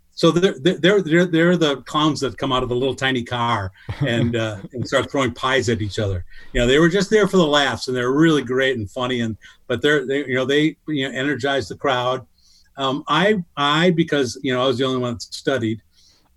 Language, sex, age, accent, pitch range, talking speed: English, male, 50-69, American, 125-165 Hz, 235 wpm